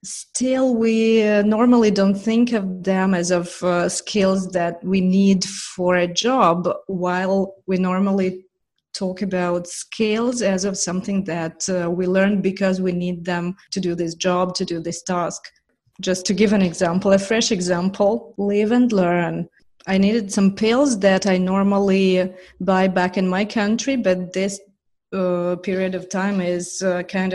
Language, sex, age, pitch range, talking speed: English, female, 30-49, 185-210 Hz, 165 wpm